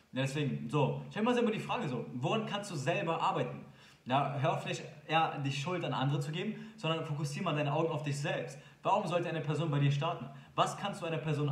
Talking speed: 225 wpm